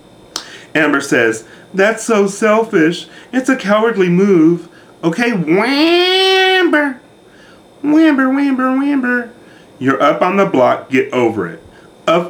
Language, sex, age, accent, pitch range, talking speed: English, male, 30-49, American, 120-200 Hz, 110 wpm